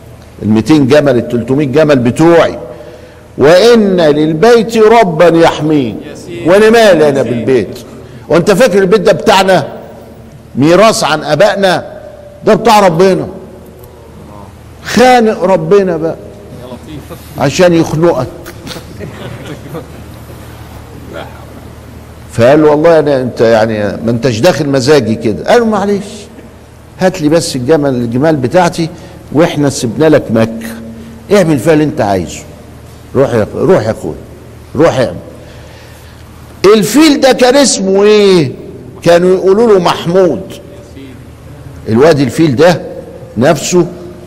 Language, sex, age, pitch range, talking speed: Arabic, male, 50-69, 120-180 Hz, 105 wpm